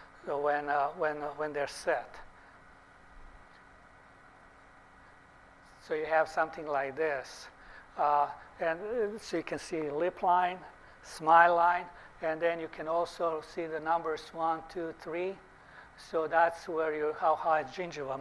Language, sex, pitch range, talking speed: English, male, 150-175 Hz, 140 wpm